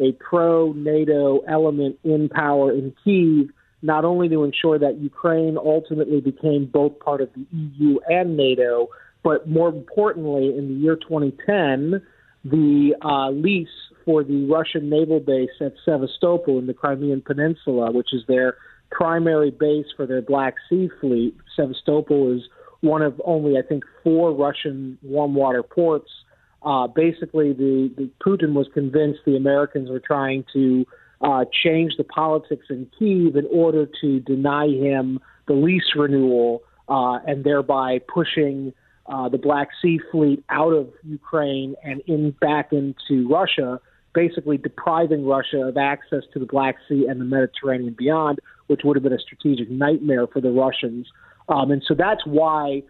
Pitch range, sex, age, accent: 135-155 Hz, male, 40-59, American